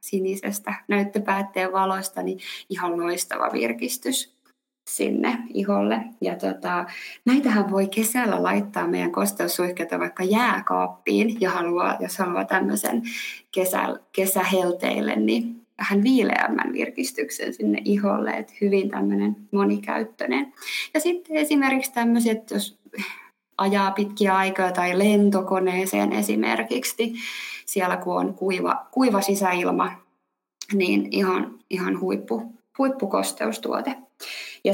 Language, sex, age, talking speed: Finnish, female, 20-39, 105 wpm